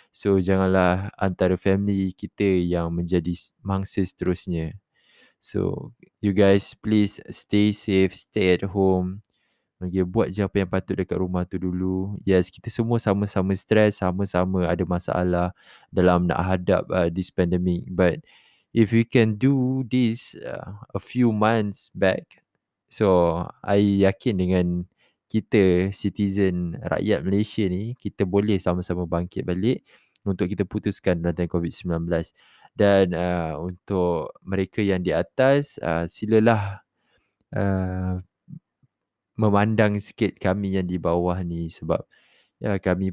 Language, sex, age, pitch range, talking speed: Malay, male, 20-39, 90-100 Hz, 130 wpm